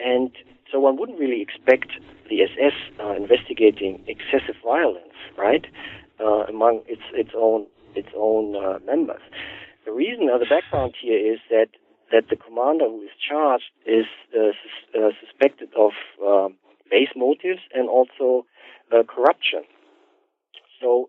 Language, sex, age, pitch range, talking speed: English, male, 50-69, 110-140 Hz, 140 wpm